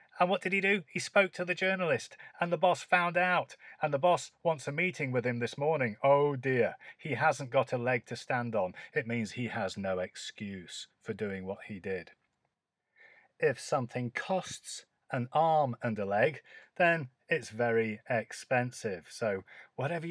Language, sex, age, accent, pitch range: Chinese, male, 40-59, British, 110-140 Hz